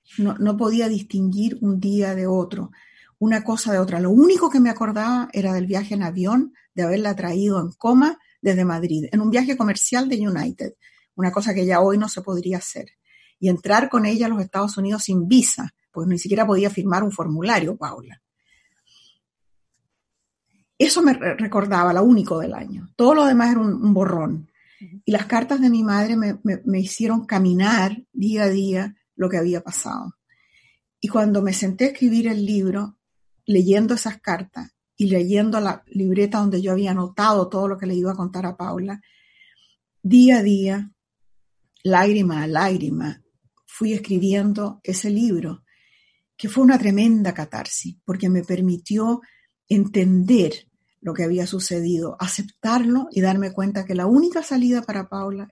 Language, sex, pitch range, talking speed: Spanish, female, 185-225 Hz, 170 wpm